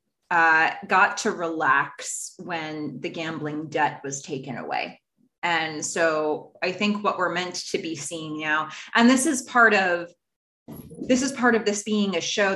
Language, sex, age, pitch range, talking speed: English, female, 20-39, 155-225 Hz, 165 wpm